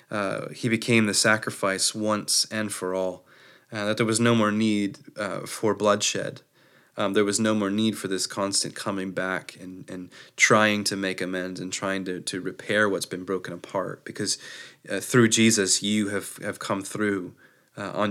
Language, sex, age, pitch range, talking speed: English, male, 20-39, 95-110 Hz, 185 wpm